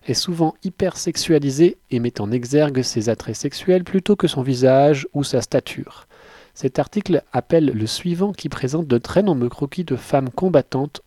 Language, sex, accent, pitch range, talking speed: French, male, French, 125-165 Hz, 175 wpm